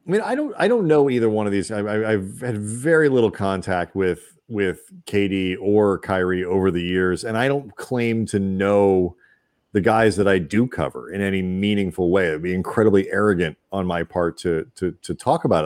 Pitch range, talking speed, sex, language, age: 95-120 Hz, 205 wpm, male, English, 40-59